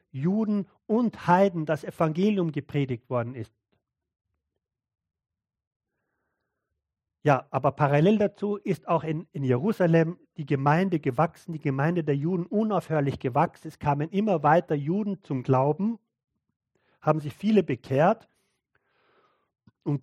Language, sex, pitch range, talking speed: German, male, 130-170 Hz, 115 wpm